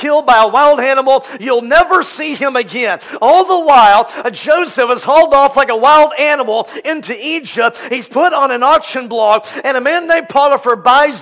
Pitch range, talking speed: 240-295 Hz, 185 wpm